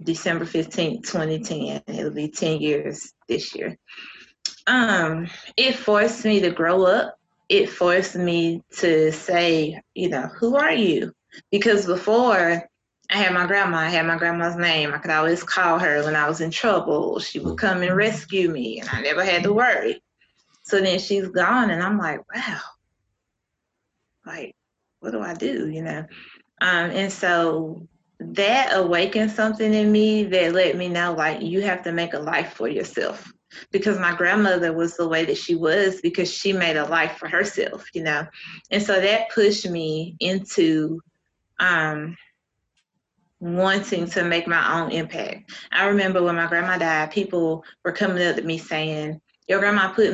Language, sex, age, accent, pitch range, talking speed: English, female, 20-39, American, 165-200 Hz, 170 wpm